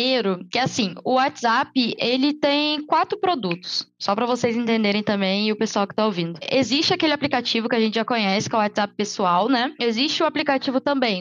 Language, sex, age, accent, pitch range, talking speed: Portuguese, female, 10-29, Brazilian, 225-285 Hz, 200 wpm